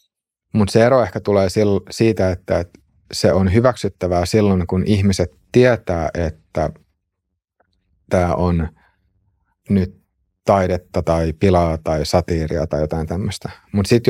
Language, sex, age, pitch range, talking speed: Finnish, male, 30-49, 90-100 Hz, 120 wpm